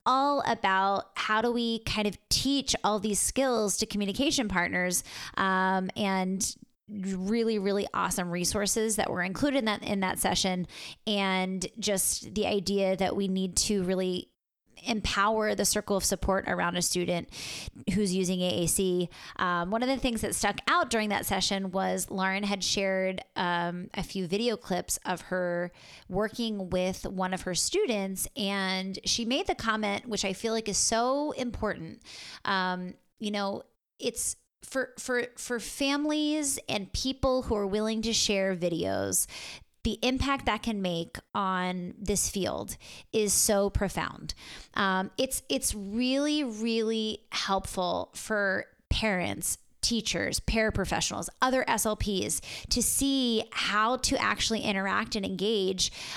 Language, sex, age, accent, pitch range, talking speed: English, female, 20-39, American, 190-225 Hz, 145 wpm